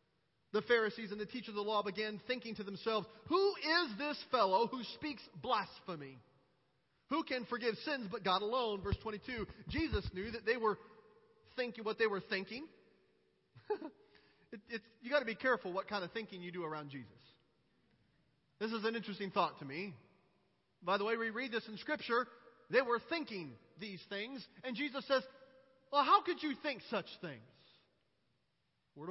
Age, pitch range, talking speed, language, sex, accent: 40-59, 185-240 Hz, 170 wpm, English, male, American